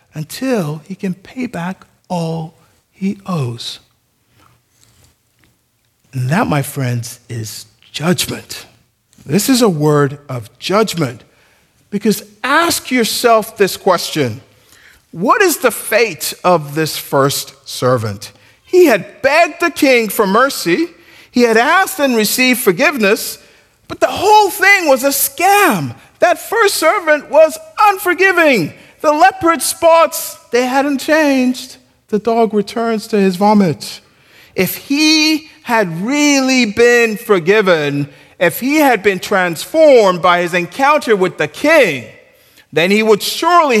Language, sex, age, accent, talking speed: English, male, 50-69, American, 125 wpm